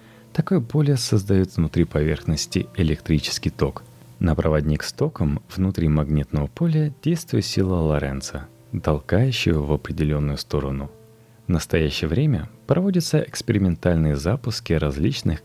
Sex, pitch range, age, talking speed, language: male, 75-120 Hz, 30-49, 110 wpm, Russian